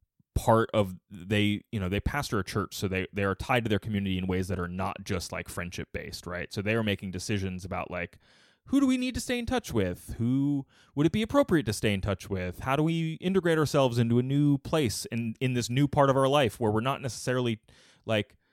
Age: 20-39